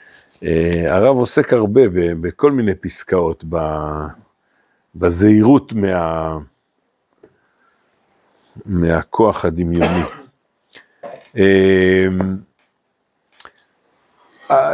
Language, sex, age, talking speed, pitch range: Hebrew, male, 50-69, 60 wpm, 90-130 Hz